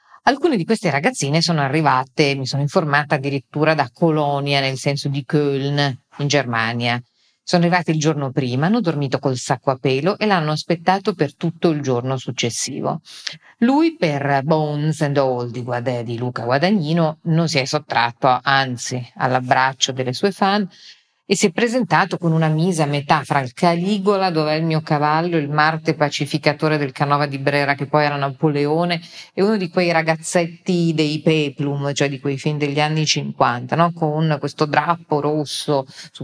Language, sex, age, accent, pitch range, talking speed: Italian, female, 50-69, native, 140-160 Hz, 170 wpm